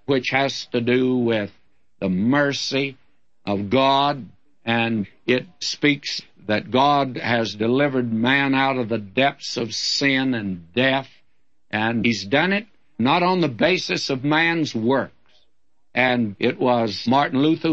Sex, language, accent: male, English, American